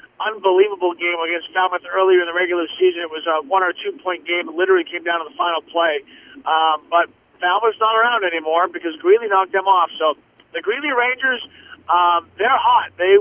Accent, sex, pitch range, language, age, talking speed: American, male, 170-205 Hz, English, 40-59, 200 wpm